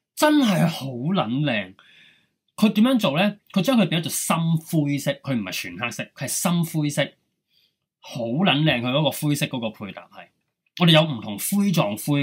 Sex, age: male, 20-39